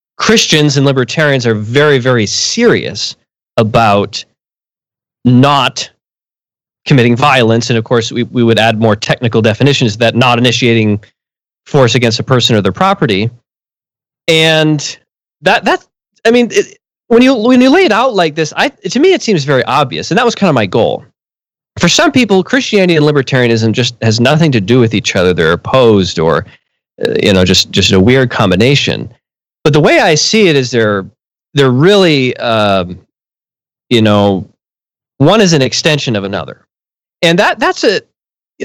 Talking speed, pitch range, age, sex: 165 wpm, 115-160 Hz, 30-49, male